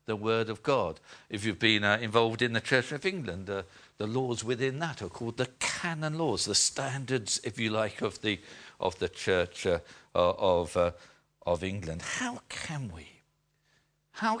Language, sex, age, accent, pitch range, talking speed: English, male, 50-69, British, 100-130 Hz, 180 wpm